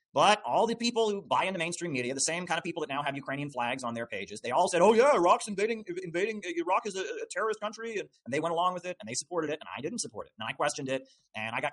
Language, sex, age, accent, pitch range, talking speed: English, male, 30-49, American, 130-170 Hz, 295 wpm